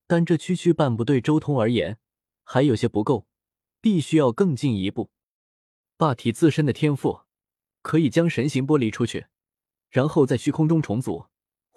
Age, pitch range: 20-39, 110-155 Hz